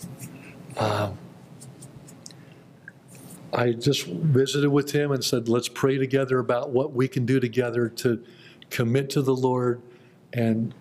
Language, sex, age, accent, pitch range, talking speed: English, male, 50-69, American, 125-145 Hz, 130 wpm